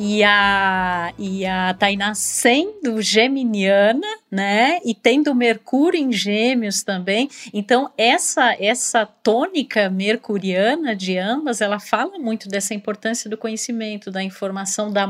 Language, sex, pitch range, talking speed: Portuguese, female, 195-235 Hz, 125 wpm